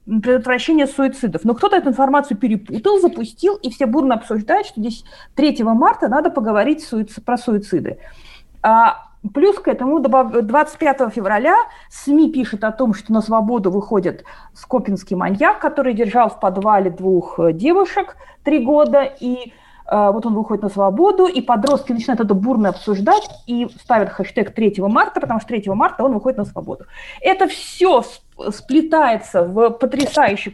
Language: Russian